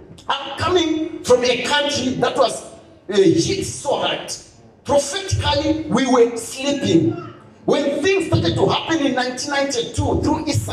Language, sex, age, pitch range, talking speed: English, male, 50-69, 190-310 Hz, 130 wpm